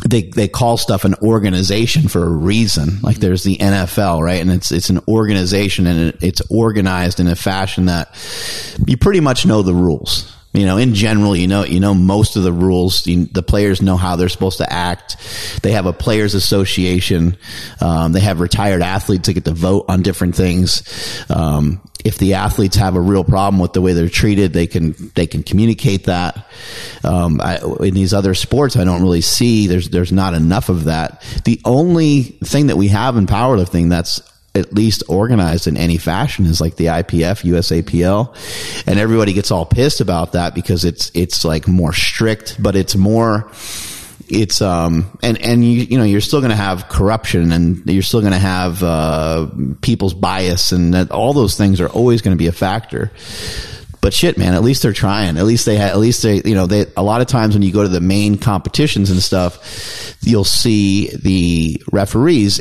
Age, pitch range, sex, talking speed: 30-49, 90-105 Hz, male, 195 wpm